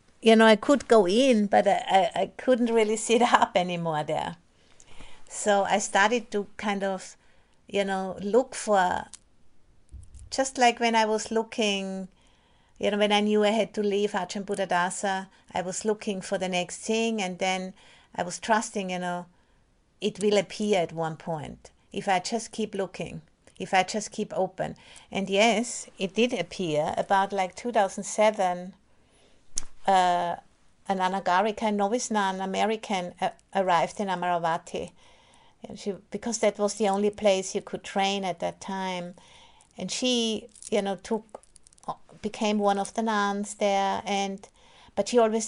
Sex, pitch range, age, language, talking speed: female, 185-220 Hz, 50-69, English, 160 wpm